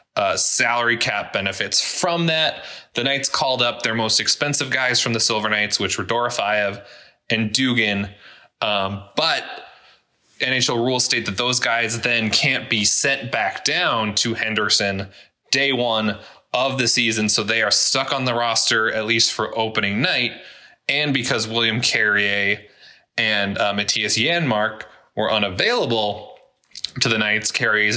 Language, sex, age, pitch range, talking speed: English, male, 20-39, 105-120 Hz, 150 wpm